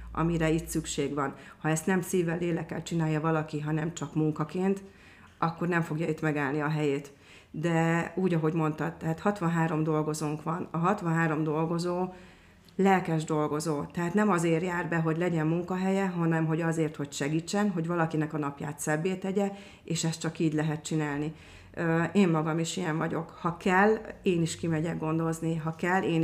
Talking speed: 165 wpm